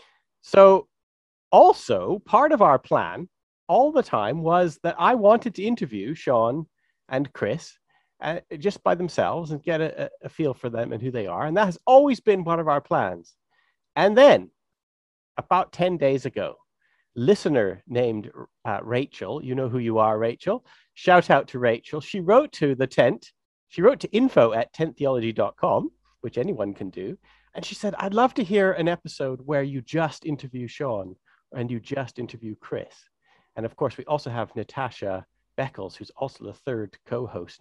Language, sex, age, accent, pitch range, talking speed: English, male, 40-59, American, 125-180 Hz, 175 wpm